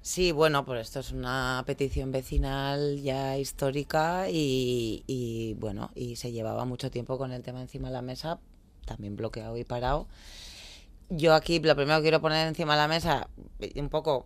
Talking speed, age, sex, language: 175 wpm, 30-49, female, Spanish